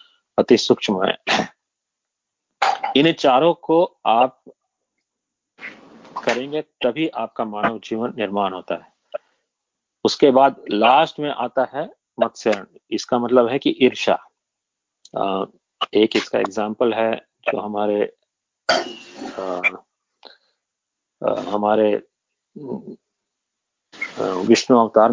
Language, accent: Hindi, native